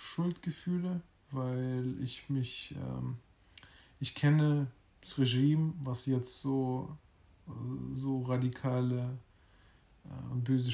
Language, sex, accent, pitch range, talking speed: German, male, German, 120-135 Hz, 90 wpm